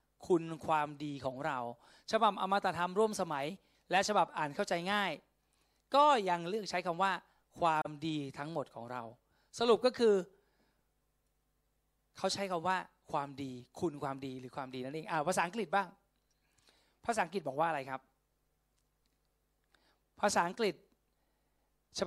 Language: Thai